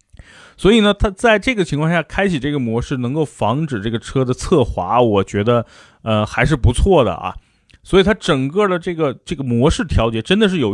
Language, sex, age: Chinese, male, 30-49